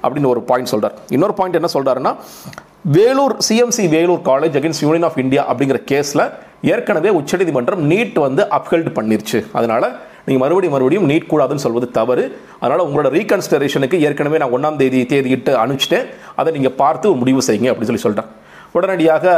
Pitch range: 130-170 Hz